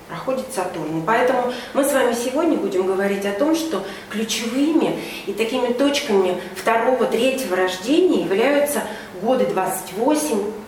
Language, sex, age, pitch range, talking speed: Russian, female, 30-49, 200-295 Hz, 125 wpm